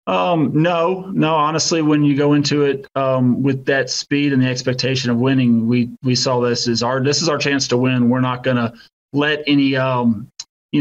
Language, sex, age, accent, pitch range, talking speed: English, male, 30-49, American, 120-145 Hz, 210 wpm